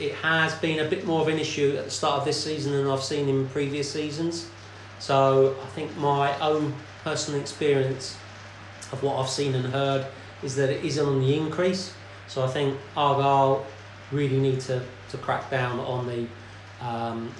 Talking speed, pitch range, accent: 185 wpm, 115-145 Hz, British